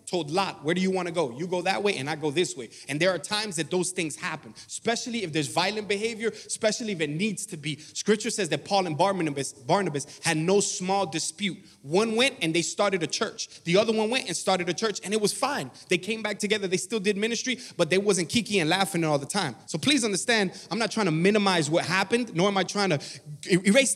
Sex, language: male, English